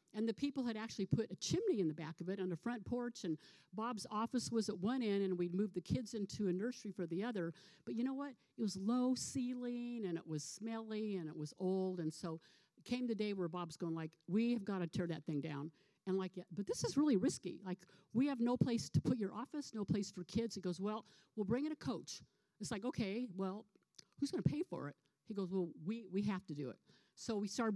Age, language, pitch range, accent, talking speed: 50-69, English, 180-235 Hz, American, 255 wpm